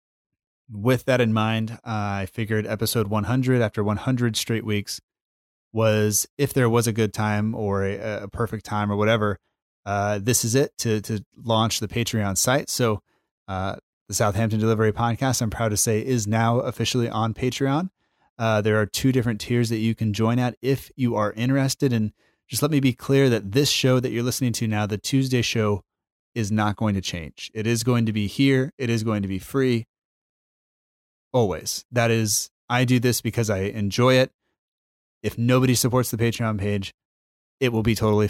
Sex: male